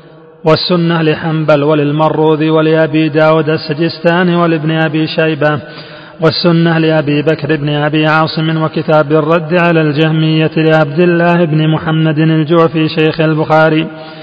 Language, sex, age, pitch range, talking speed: Arabic, male, 40-59, 155-170 Hz, 110 wpm